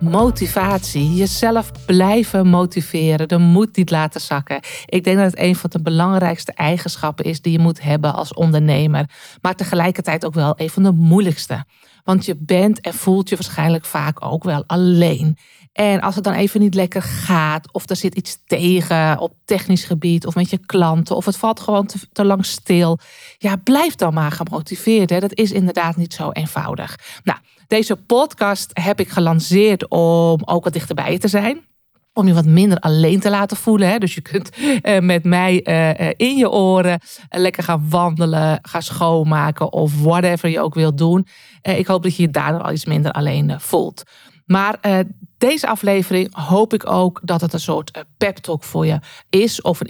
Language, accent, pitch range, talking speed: Dutch, Dutch, 160-195 Hz, 180 wpm